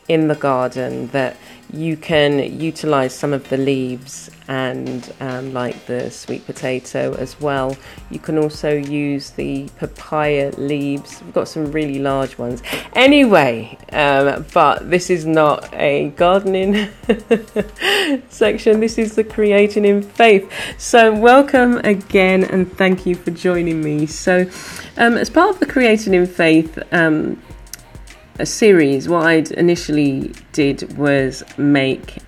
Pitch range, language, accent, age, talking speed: 135-185 Hz, English, British, 30-49, 135 wpm